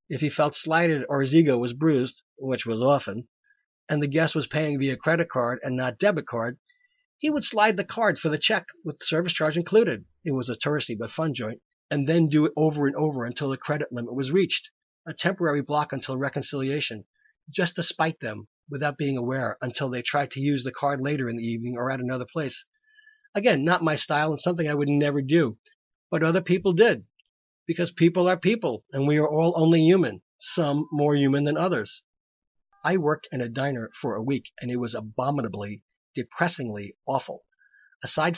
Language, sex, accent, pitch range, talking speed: English, male, American, 125-165 Hz, 200 wpm